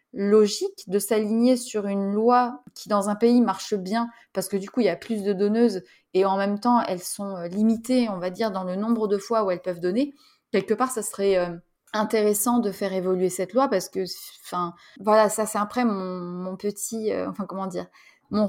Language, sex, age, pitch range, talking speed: French, female, 20-39, 195-240 Hz, 215 wpm